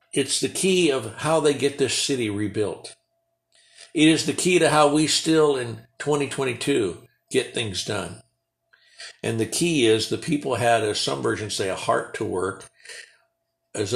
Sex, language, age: male, English, 60-79